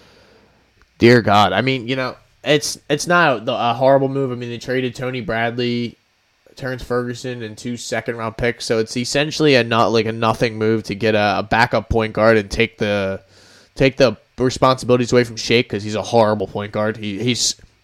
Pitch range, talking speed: 100-125 Hz, 200 wpm